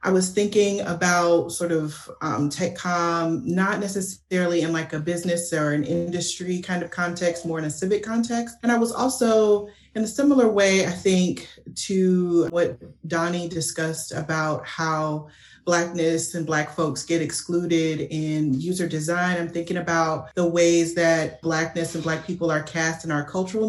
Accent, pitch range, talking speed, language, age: American, 160-185 Hz, 165 wpm, English, 30-49